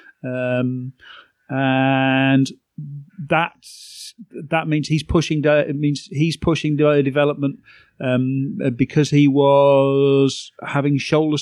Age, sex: 40-59, male